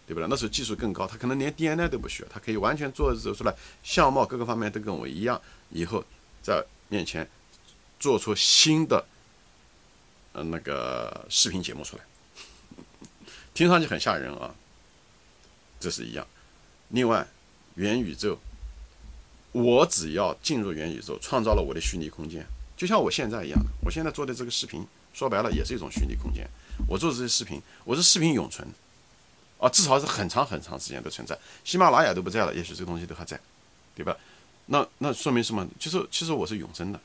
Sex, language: male, Chinese